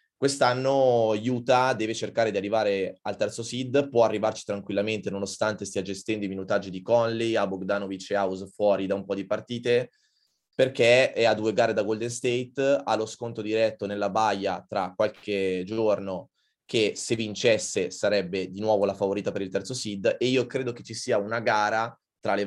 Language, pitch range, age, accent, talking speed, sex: Italian, 100-120 Hz, 20-39, native, 180 wpm, male